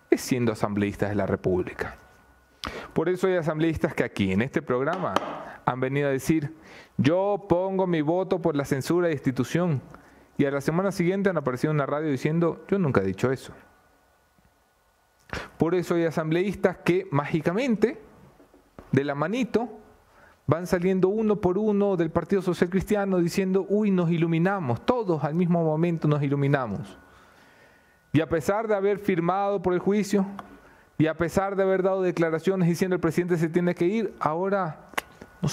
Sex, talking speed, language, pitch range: male, 165 wpm, English, 125-185 Hz